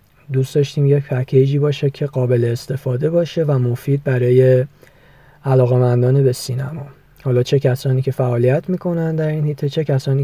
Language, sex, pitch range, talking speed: Persian, male, 130-145 Hz, 145 wpm